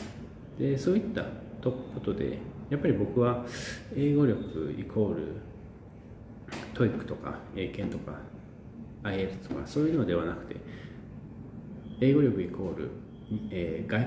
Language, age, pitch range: Japanese, 40-59, 100-120 Hz